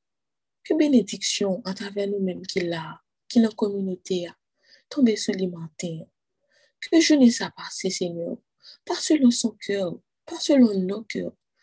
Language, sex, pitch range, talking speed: French, female, 185-245 Hz, 145 wpm